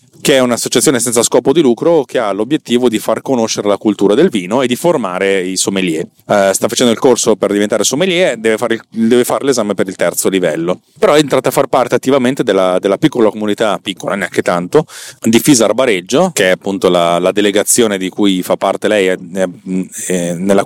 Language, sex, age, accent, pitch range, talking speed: Italian, male, 30-49, native, 95-125 Hz, 205 wpm